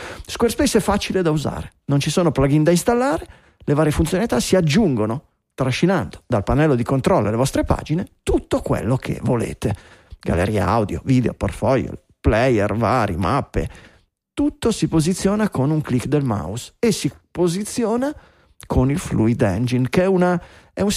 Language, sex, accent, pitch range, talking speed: Italian, male, native, 130-175 Hz, 155 wpm